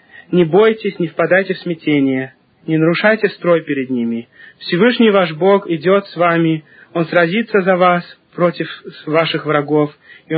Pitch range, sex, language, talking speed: 165-205 Hz, male, Russian, 145 wpm